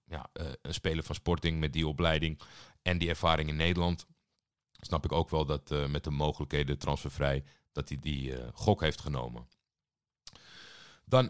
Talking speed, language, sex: 165 wpm, Dutch, male